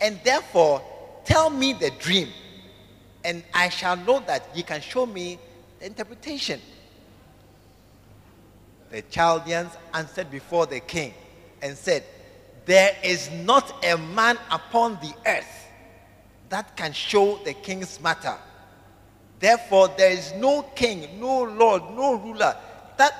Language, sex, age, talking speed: English, male, 50-69, 125 wpm